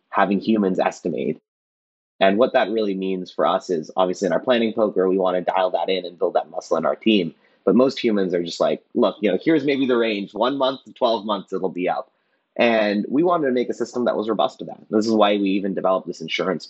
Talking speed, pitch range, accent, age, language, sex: 250 wpm, 95-120 Hz, American, 30-49, English, male